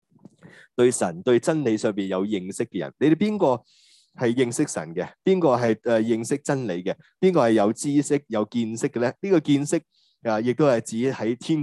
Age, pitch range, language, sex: 30-49, 110-160 Hz, Chinese, male